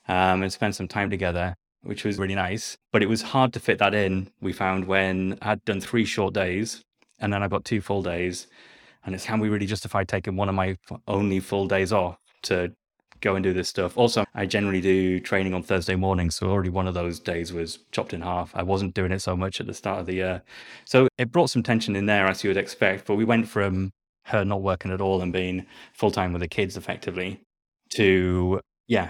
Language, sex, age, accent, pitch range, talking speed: English, male, 20-39, British, 95-105 Hz, 235 wpm